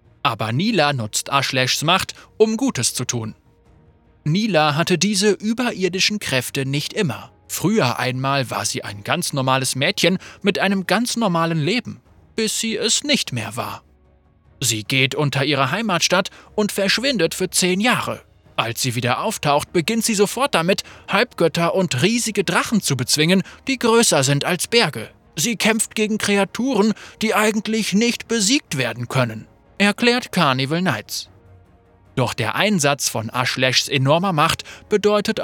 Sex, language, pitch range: male, German, 130-200 Hz